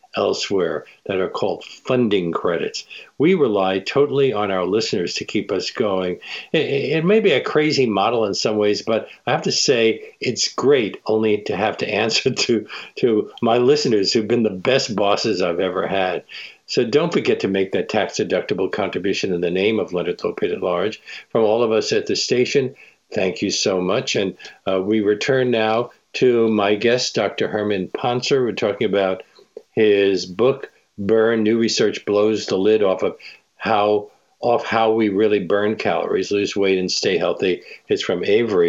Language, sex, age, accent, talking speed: English, male, 60-79, American, 180 wpm